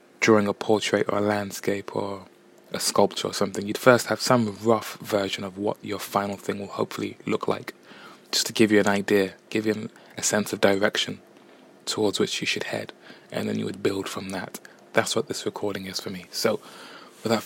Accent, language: British, English